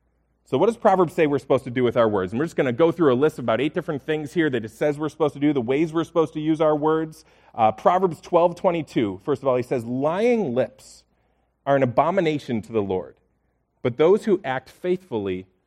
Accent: American